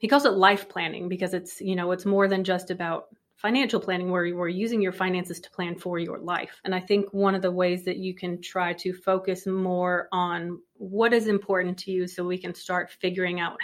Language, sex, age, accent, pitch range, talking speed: English, female, 30-49, American, 180-200 Hz, 235 wpm